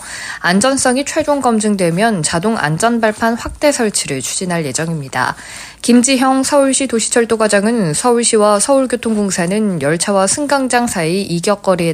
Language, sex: Korean, female